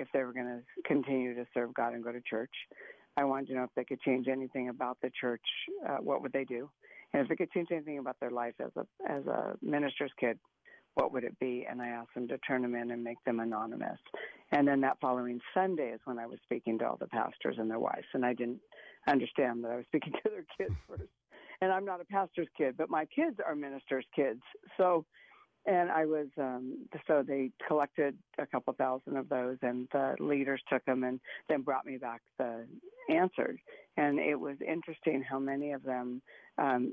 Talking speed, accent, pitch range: 220 wpm, American, 125-145 Hz